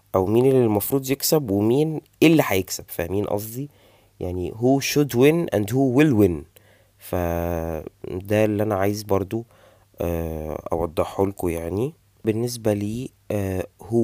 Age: 20-39